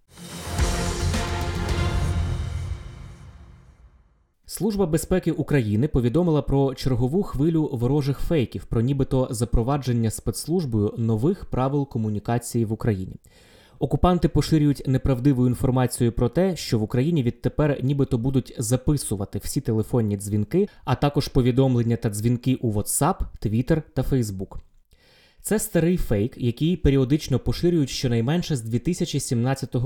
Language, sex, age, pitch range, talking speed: Ukrainian, male, 20-39, 115-150 Hz, 105 wpm